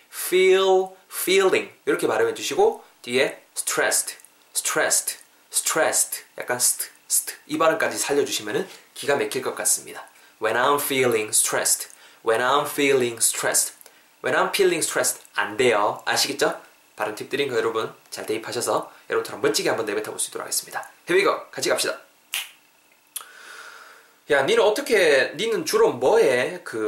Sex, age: male, 20-39